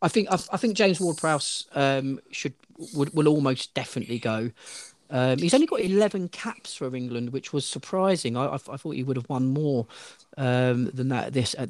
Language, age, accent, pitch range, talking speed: English, 40-59, British, 130-185 Hz, 195 wpm